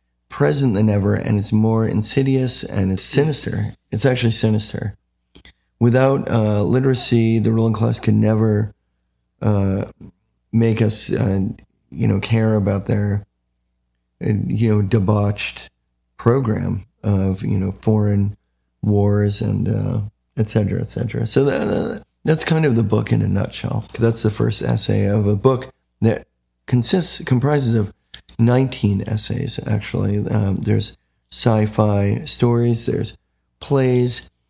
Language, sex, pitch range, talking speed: English, male, 95-115 Hz, 135 wpm